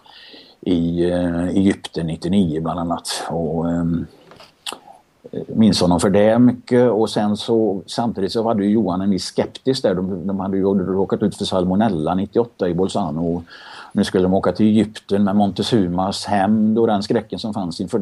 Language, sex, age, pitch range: Swedish, male, 50-69, 95-115 Hz